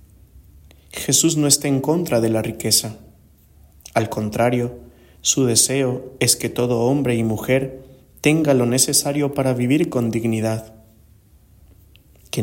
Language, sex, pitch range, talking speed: English, male, 110-135 Hz, 125 wpm